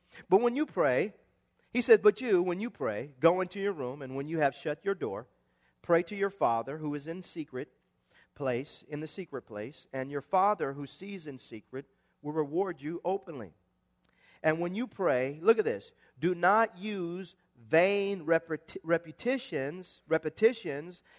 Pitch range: 135-180 Hz